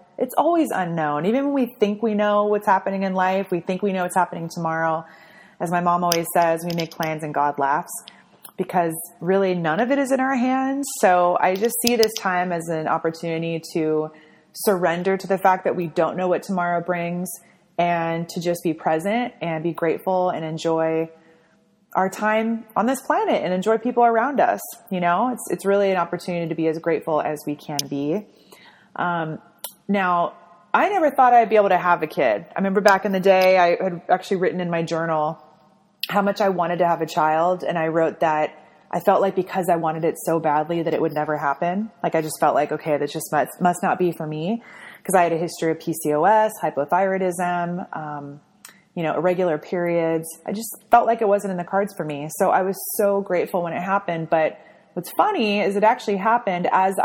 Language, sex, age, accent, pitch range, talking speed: English, female, 20-39, American, 165-200 Hz, 210 wpm